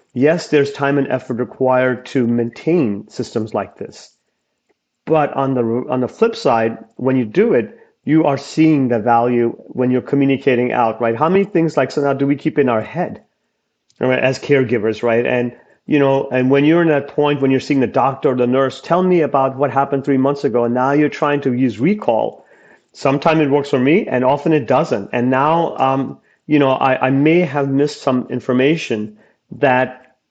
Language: English